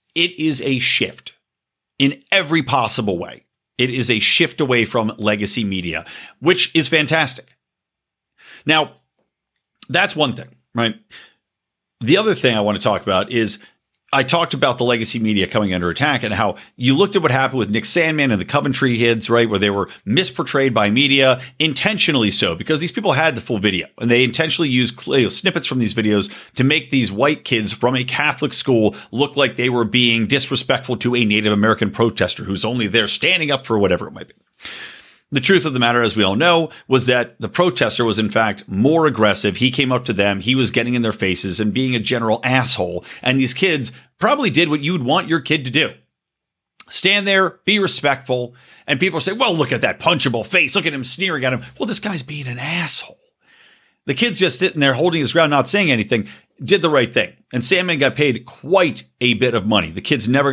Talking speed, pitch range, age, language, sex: 205 wpm, 110-155 Hz, 50-69, English, male